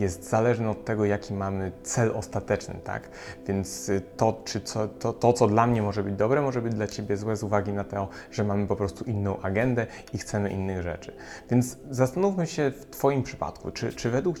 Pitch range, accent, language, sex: 100-125 Hz, native, Polish, male